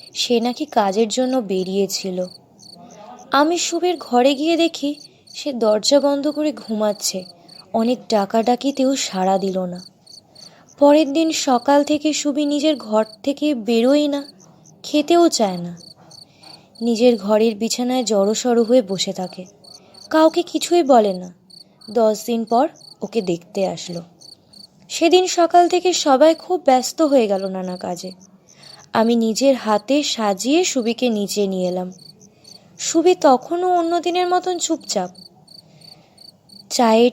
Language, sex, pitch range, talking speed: Bengali, female, 205-300 Hz, 125 wpm